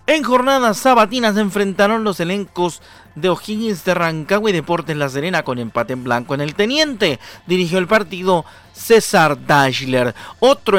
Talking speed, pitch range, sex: 155 wpm, 170-220 Hz, male